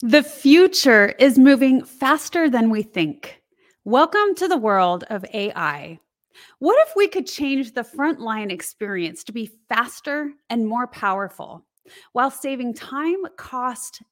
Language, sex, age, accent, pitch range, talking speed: English, female, 30-49, American, 215-295 Hz, 135 wpm